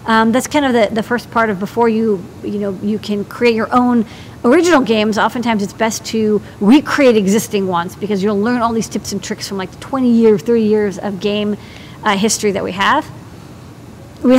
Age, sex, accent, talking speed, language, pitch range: 50-69, female, American, 205 wpm, English, 210-250 Hz